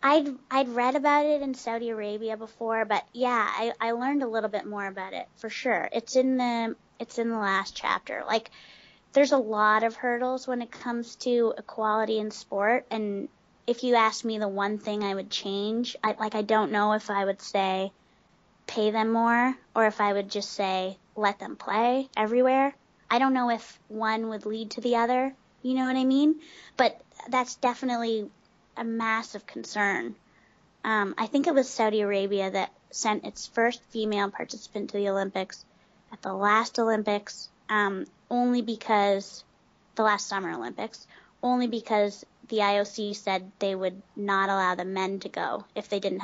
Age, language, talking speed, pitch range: 20-39, English, 180 wpm, 205-245 Hz